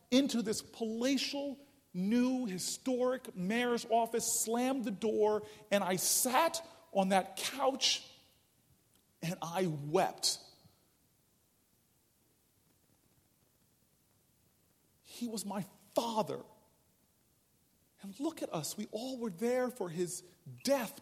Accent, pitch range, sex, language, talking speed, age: American, 180-245 Hz, male, English, 95 wpm, 40-59